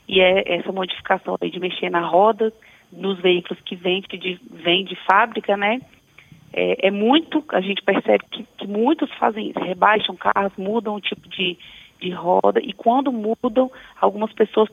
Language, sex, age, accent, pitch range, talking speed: Portuguese, female, 20-39, Brazilian, 195-235 Hz, 165 wpm